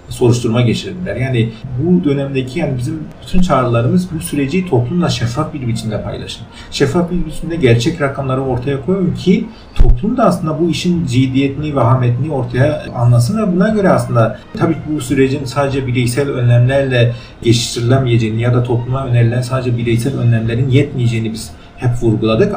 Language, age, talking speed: Turkish, 40-59, 150 wpm